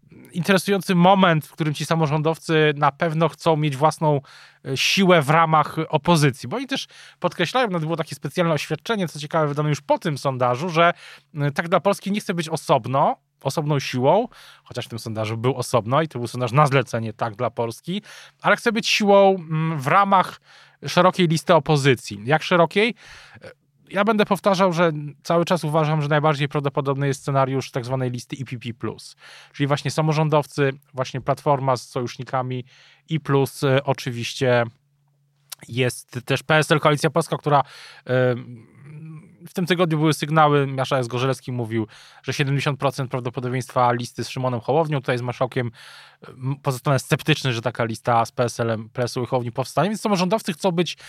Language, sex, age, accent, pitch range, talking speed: Polish, male, 20-39, native, 130-170 Hz, 155 wpm